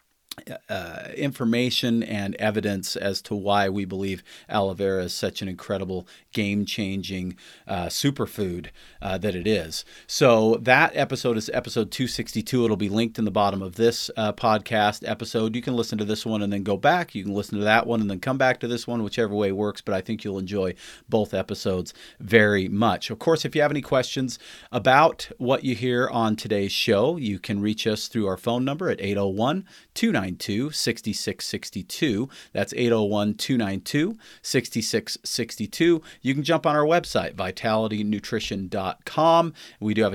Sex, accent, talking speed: male, American, 165 wpm